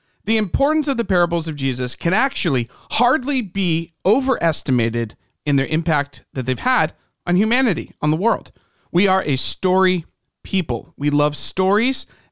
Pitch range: 145-215 Hz